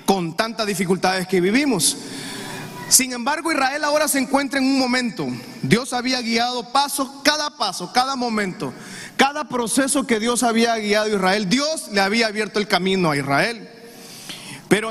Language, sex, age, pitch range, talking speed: Spanish, male, 30-49, 195-250 Hz, 155 wpm